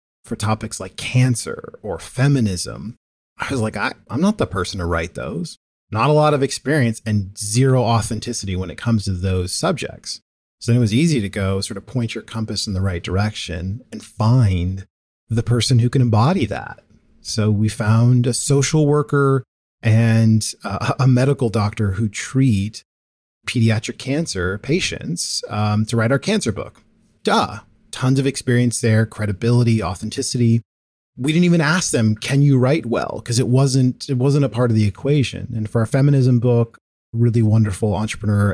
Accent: American